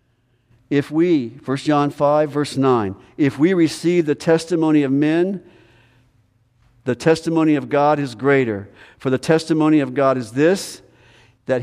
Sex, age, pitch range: male, 50-69, 125-155 Hz